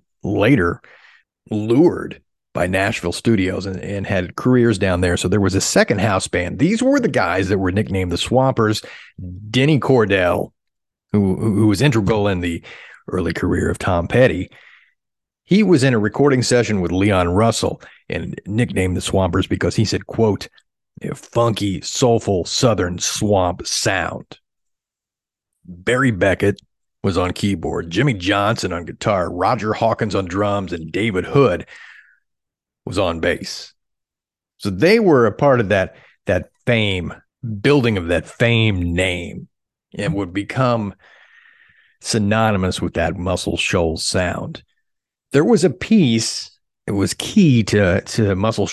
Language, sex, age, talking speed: English, male, 40-59, 140 wpm